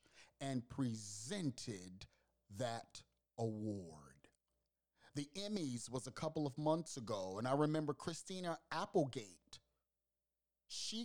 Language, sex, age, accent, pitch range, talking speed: English, male, 30-49, American, 95-150 Hz, 100 wpm